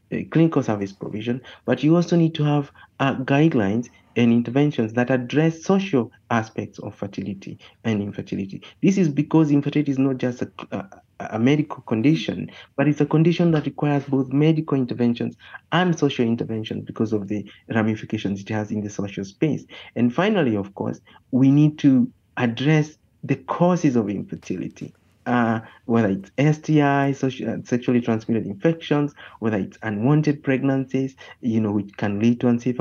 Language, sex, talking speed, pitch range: English, male, 155 wpm, 115-145 Hz